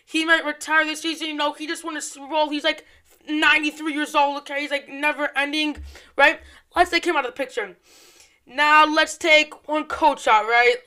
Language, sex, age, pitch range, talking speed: English, female, 20-39, 270-320 Hz, 205 wpm